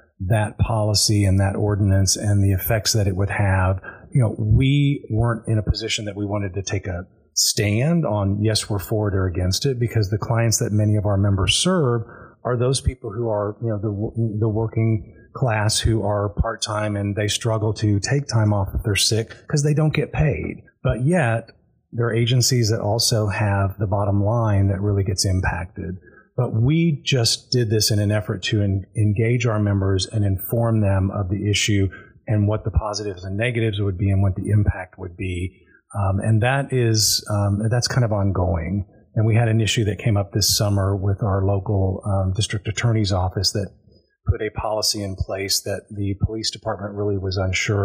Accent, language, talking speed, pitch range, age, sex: American, English, 200 wpm, 100-115 Hz, 30-49, male